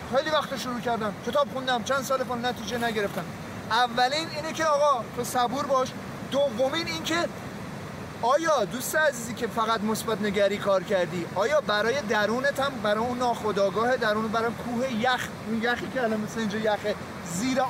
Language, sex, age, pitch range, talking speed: Persian, male, 30-49, 205-250 Hz, 160 wpm